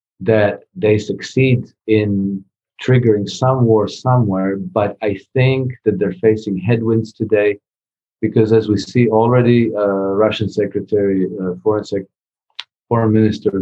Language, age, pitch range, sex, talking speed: English, 40-59, 100-115 Hz, male, 125 wpm